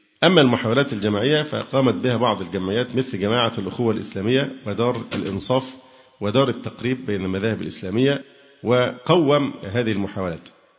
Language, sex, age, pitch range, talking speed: Arabic, male, 50-69, 105-135 Hz, 115 wpm